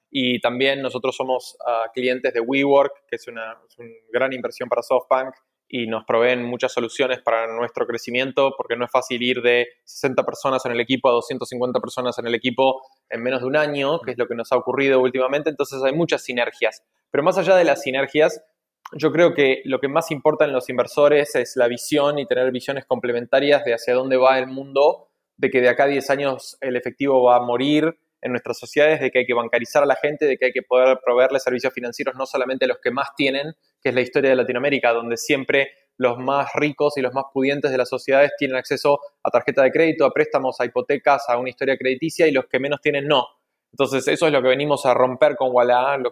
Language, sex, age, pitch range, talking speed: Spanish, male, 20-39, 125-140 Hz, 225 wpm